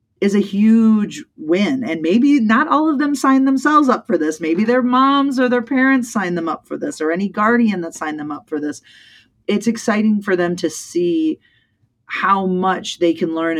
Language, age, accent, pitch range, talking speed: English, 30-49, American, 160-220 Hz, 205 wpm